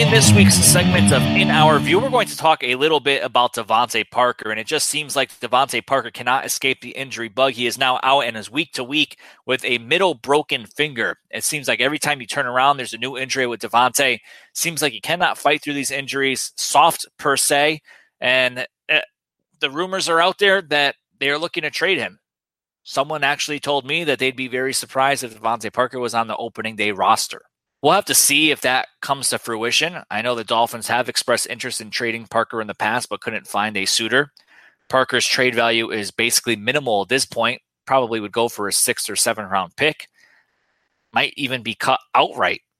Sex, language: male, English